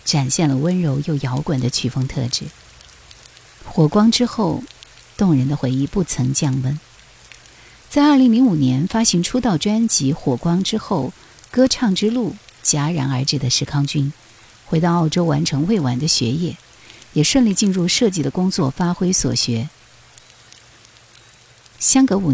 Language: Chinese